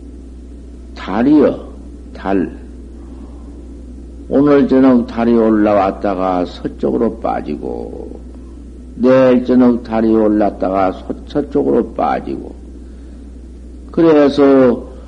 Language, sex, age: Korean, male, 60-79